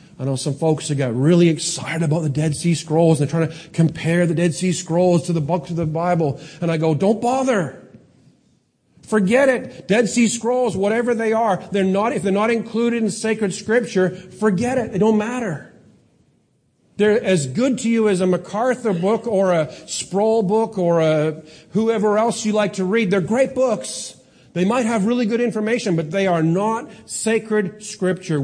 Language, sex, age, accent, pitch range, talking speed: English, male, 40-59, American, 165-215 Hz, 190 wpm